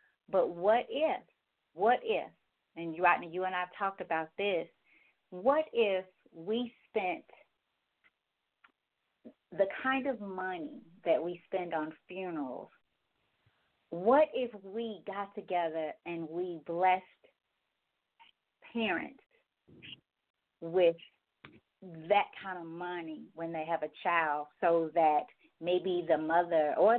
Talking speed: 115 wpm